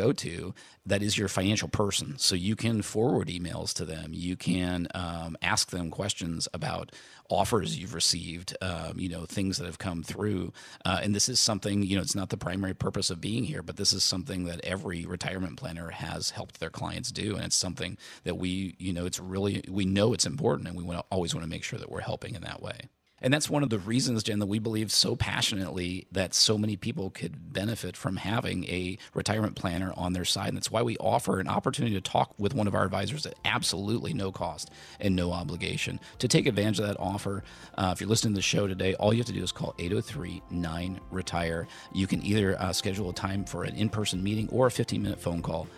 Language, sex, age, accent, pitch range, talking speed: English, male, 40-59, American, 90-105 Hz, 225 wpm